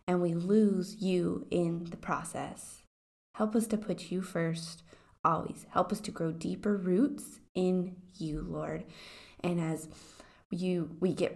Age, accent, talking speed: 20-39, American, 145 wpm